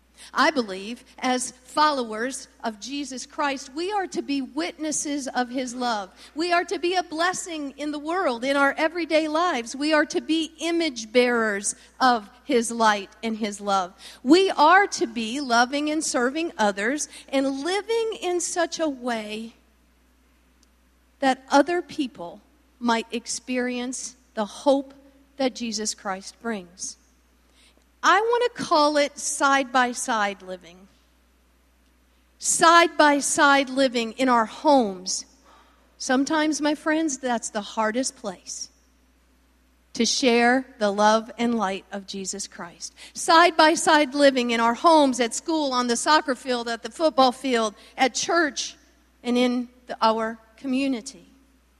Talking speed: 140 wpm